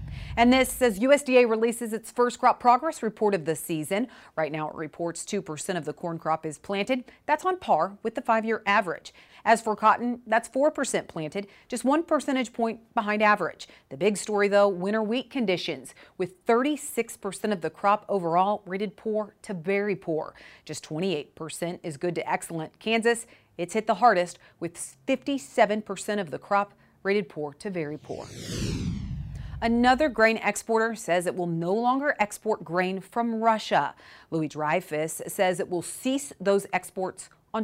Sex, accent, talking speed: female, American, 165 wpm